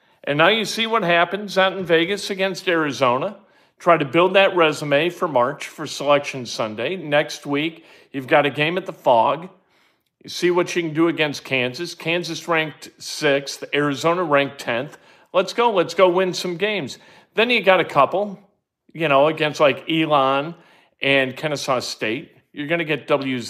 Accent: American